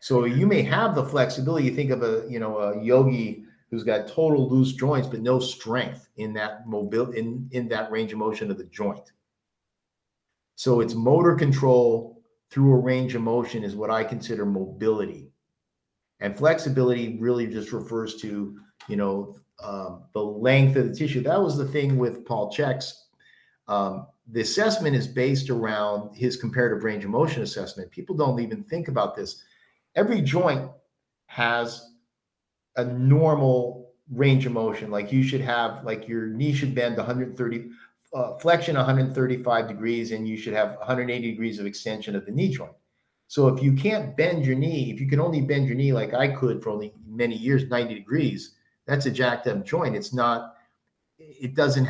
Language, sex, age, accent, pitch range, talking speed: English, male, 50-69, American, 115-135 Hz, 175 wpm